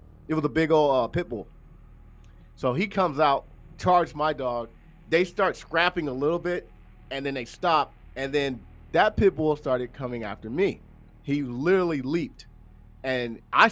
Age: 30-49